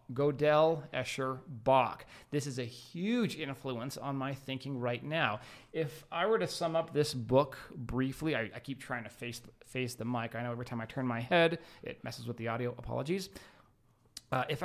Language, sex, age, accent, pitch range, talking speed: English, male, 30-49, American, 120-150 Hz, 195 wpm